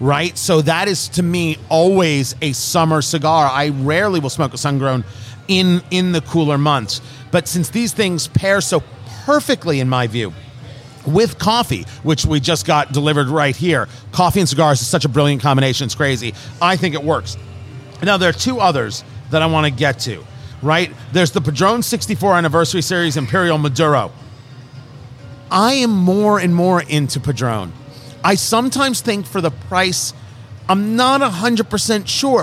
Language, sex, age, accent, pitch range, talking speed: English, male, 40-59, American, 135-195 Hz, 175 wpm